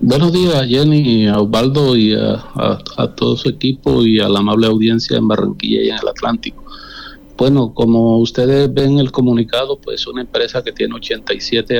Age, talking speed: 50-69, 190 wpm